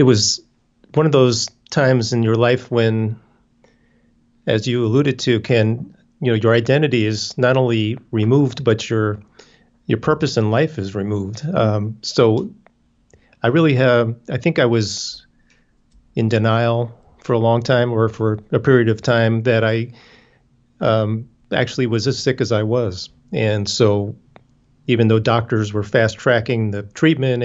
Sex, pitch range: male, 110-125 Hz